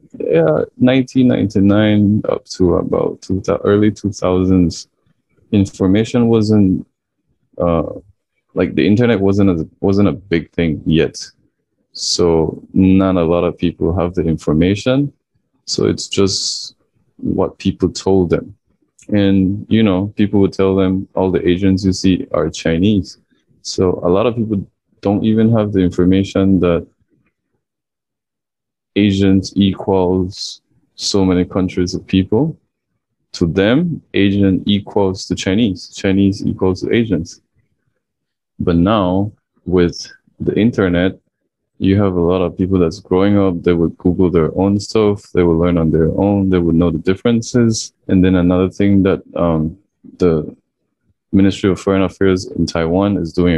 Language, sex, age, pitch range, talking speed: English, male, 20-39, 90-100 Hz, 140 wpm